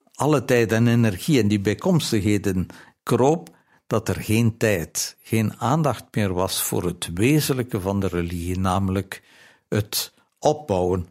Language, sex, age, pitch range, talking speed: Dutch, male, 60-79, 95-125 Hz, 135 wpm